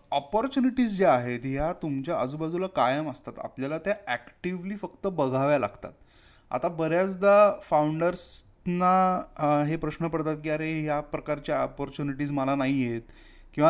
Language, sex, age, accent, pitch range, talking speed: Marathi, male, 20-39, native, 125-160 Hz, 120 wpm